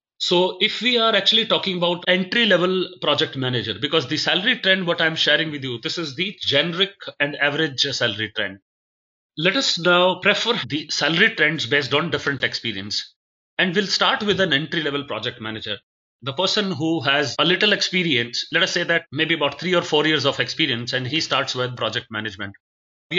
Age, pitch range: 30-49, 135-175 Hz